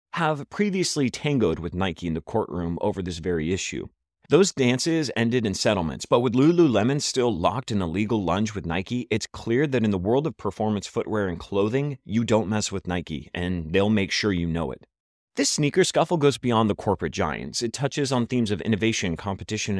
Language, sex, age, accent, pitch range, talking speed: English, male, 30-49, American, 105-155 Hz, 200 wpm